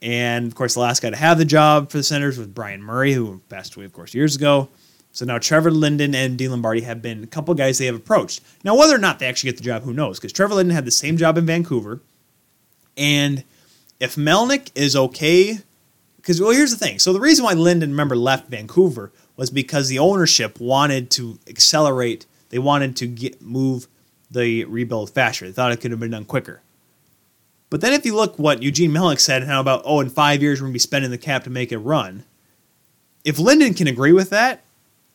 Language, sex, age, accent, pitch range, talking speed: English, male, 30-49, American, 115-155 Hz, 225 wpm